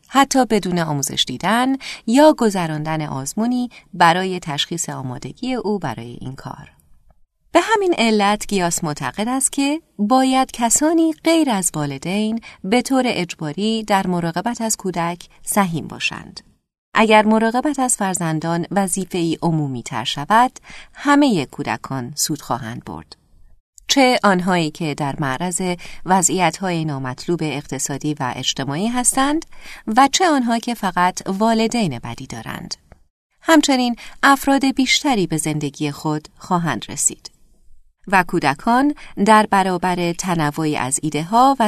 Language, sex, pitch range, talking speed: Arabic, female, 155-245 Hz, 120 wpm